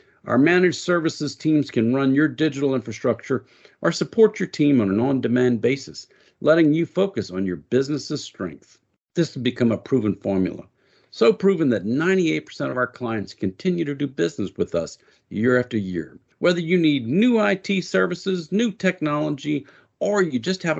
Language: English